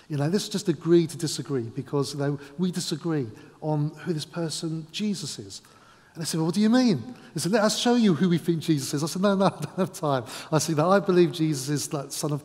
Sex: male